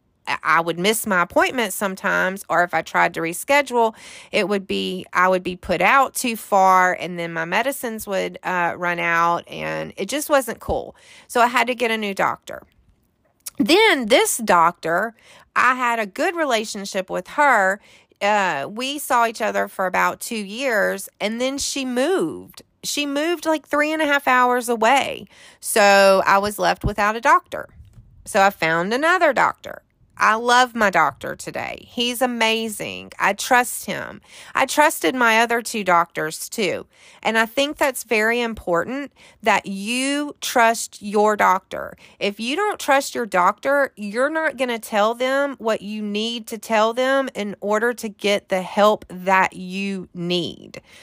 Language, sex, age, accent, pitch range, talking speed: English, female, 30-49, American, 190-255 Hz, 165 wpm